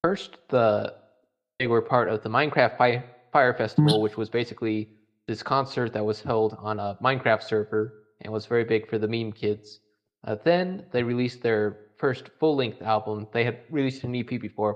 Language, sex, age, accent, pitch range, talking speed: English, male, 20-39, American, 105-125 Hz, 180 wpm